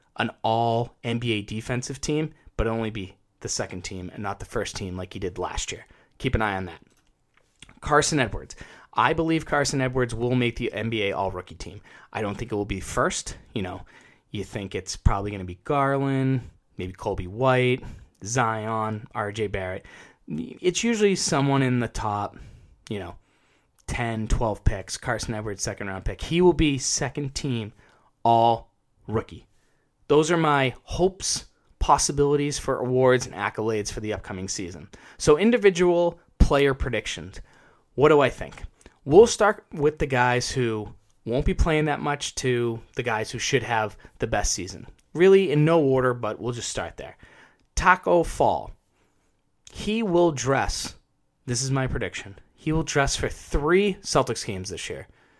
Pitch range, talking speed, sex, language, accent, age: 105-140 Hz, 165 wpm, male, English, American, 20-39